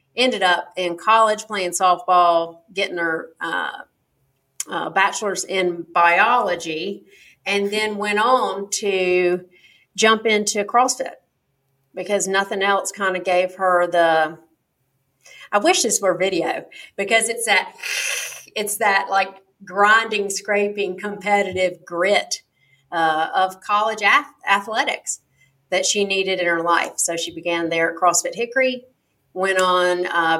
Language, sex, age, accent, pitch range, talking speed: English, female, 40-59, American, 175-205 Hz, 125 wpm